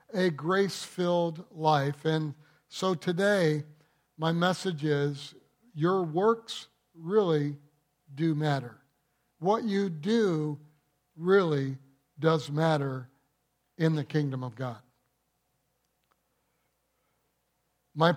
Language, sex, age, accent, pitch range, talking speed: English, male, 60-79, American, 150-195 Hz, 85 wpm